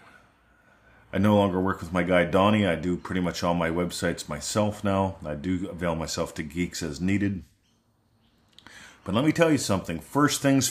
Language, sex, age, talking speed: English, male, 40-59, 185 wpm